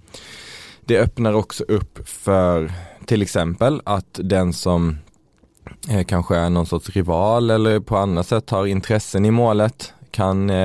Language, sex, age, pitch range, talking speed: Swedish, male, 20-39, 90-115 Hz, 135 wpm